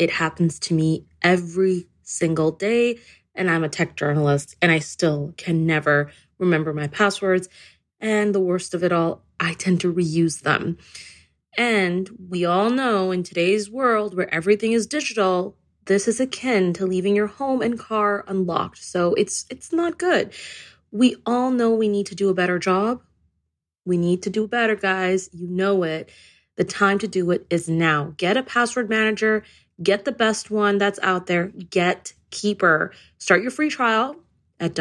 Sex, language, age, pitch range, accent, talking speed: female, English, 20-39, 165-210 Hz, American, 170 wpm